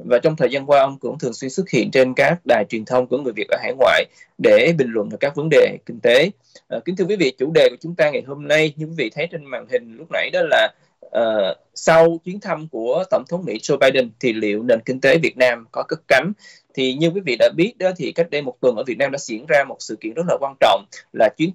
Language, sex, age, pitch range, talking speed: Vietnamese, male, 20-39, 130-190 Hz, 285 wpm